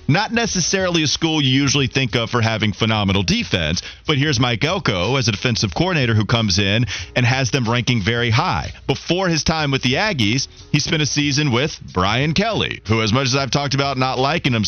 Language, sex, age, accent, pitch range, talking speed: English, male, 30-49, American, 105-150 Hz, 215 wpm